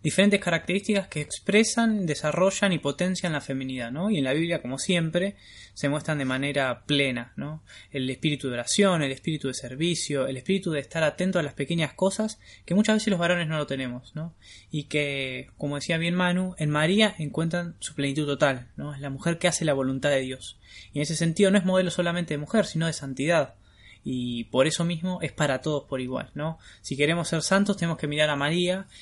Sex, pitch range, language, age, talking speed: male, 135-175 Hz, Spanish, 20-39, 210 wpm